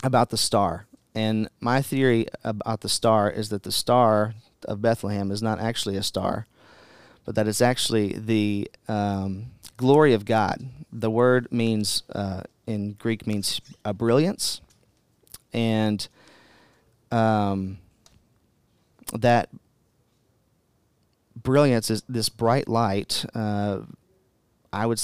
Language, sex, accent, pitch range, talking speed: English, male, American, 105-115 Hz, 115 wpm